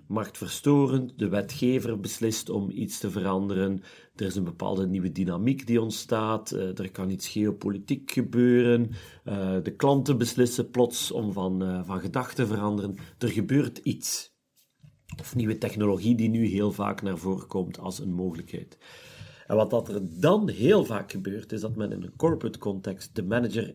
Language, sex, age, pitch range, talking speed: Dutch, male, 40-59, 100-120 Hz, 160 wpm